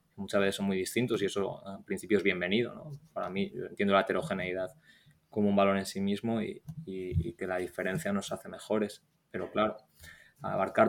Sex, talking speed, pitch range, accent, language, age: male, 185 wpm, 100-125 Hz, Spanish, Spanish, 20-39